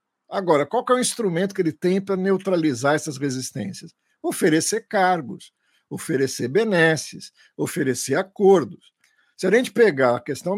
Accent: Brazilian